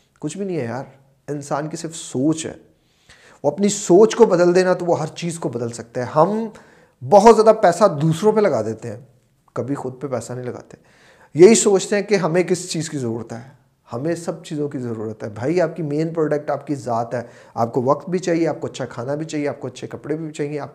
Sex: male